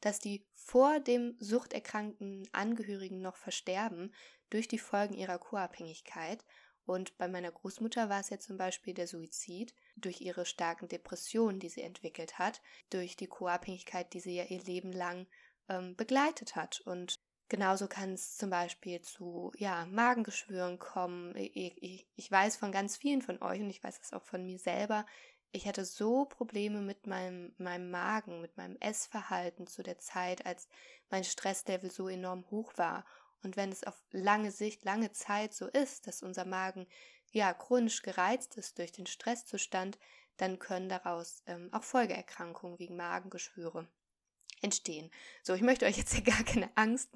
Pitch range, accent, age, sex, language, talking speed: 180-215 Hz, German, 20-39, female, German, 165 wpm